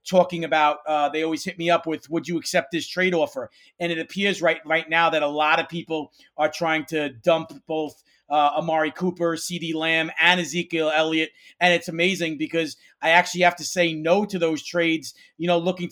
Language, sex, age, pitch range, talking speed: English, male, 40-59, 160-180 Hz, 205 wpm